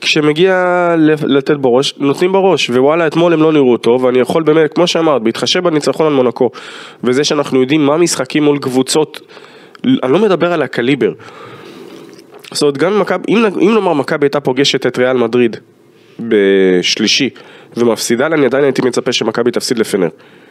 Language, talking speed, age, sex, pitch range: Hebrew, 160 wpm, 20-39, male, 120-170 Hz